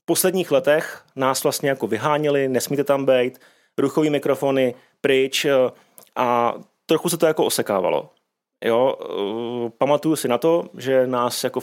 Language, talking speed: Czech, 140 wpm